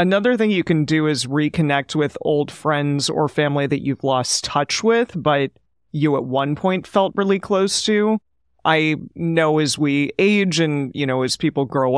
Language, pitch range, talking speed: English, 135-155 Hz, 185 wpm